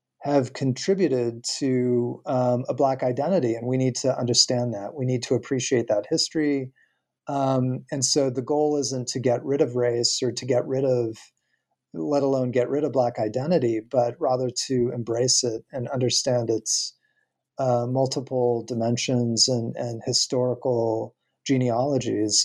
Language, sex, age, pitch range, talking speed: English, male, 30-49, 120-145 Hz, 150 wpm